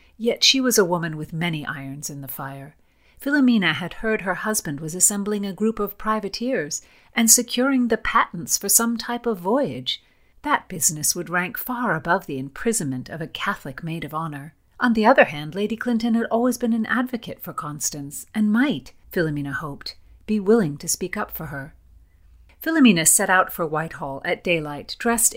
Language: English